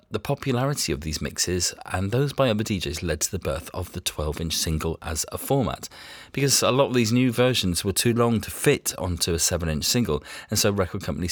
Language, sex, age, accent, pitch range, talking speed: English, male, 40-59, British, 80-110 Hz, 215 wpm